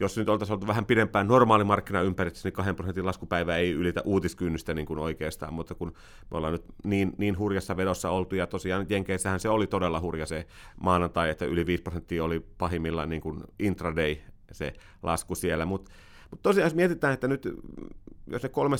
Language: Finnish